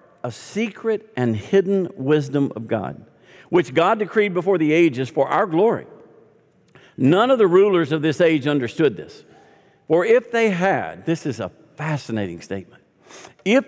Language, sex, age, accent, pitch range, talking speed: English, male, 50-69, American, 125-190 Hz, 155 wpm